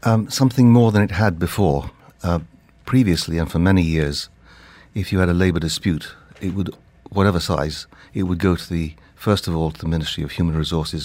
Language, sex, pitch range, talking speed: English, male, 80-95 Hz, 200 wpm